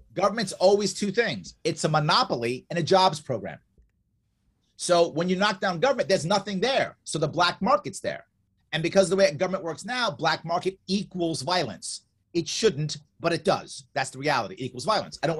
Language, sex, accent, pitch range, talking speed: English, male, American, 140-195 Hz, 195 wpm